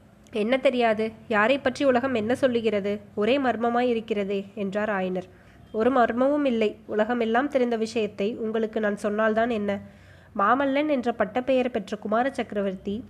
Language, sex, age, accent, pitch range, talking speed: Tamil, female, 20-39, native, 215-255 Hz, 130 wpm